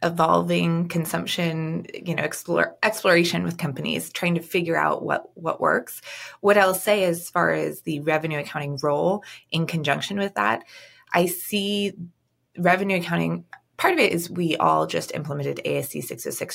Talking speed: 155 wpm